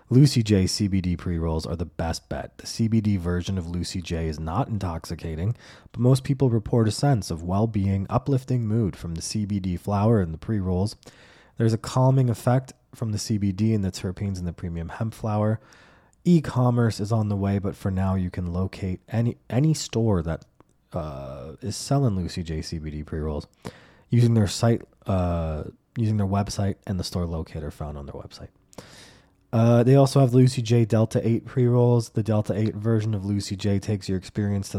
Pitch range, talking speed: 90-120 Hz, 190 wpm